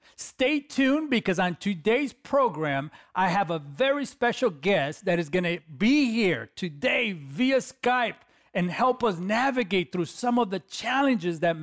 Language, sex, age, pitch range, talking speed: English, male, 40-59, 175-235 Hz, 160 wpm